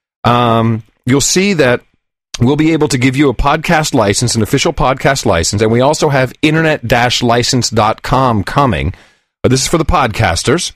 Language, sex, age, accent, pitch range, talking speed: English, male, 40-59, American, 105-150 Hz, 160 wpm